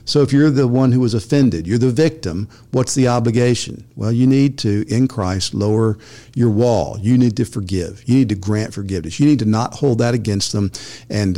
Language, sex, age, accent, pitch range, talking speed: English, male, 50-69, American, 105-130 Hz, 215 wpm